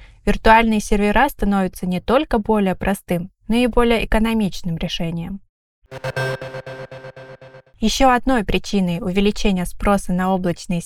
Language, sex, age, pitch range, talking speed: Russian, female, 20-39, 185-230 Hz, 105 wpm